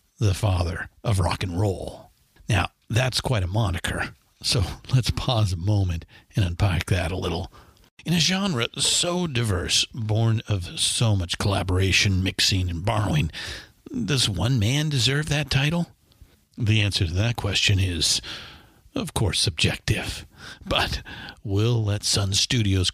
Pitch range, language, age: 95-120 Hz, English, 50-69